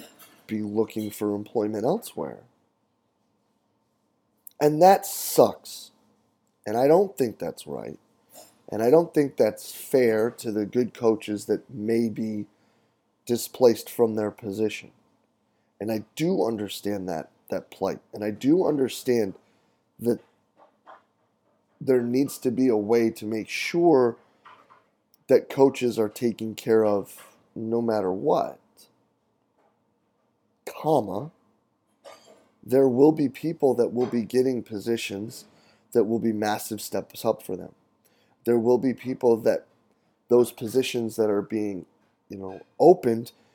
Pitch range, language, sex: 110-130 Hz, English, male